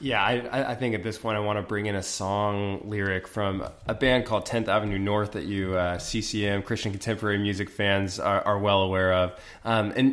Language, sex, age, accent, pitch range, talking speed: English, male, 20-39, American, 95-125 Hz, 220 wpm